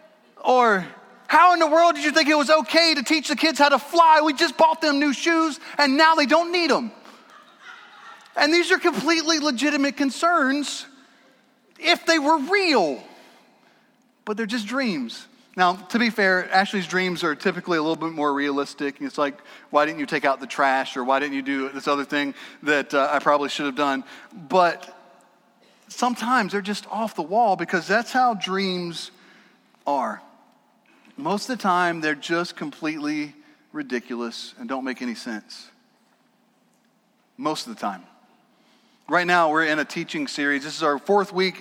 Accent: American